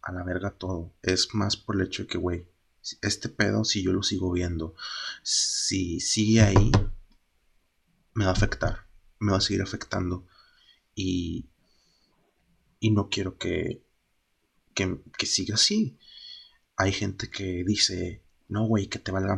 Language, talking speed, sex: Spanish, 150 wpm, male